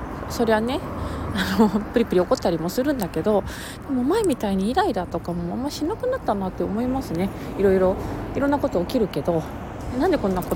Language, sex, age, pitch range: Japanese, female, 20-39, 180-255 Hz